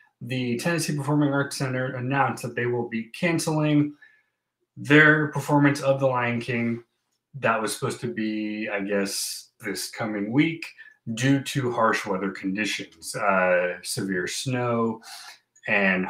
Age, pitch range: 30-49, 100-145 Hz